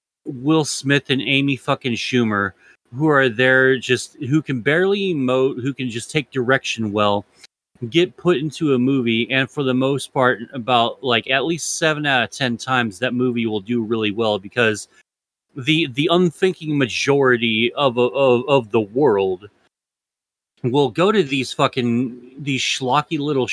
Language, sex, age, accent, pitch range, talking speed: English, male, 30-49, American, 125-155 Hz, 160 wpm